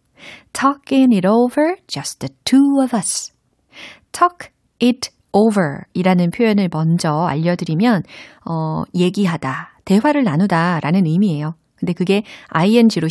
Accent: native